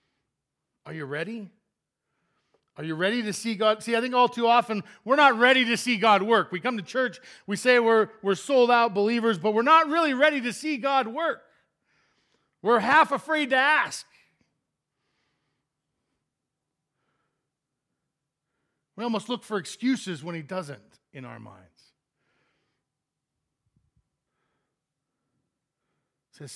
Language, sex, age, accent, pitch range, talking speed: English, male, 50-69, American, 150-230 Hz, 135 wpm